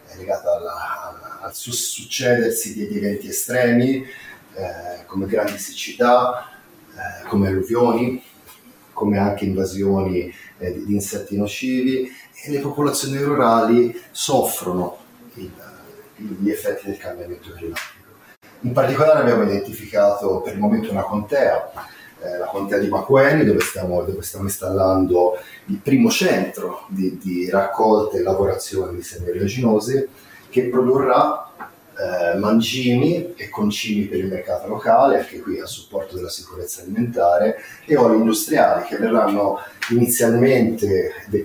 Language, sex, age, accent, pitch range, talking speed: Italian, male, 30-49, native, 100-130 Hz, 120 wpm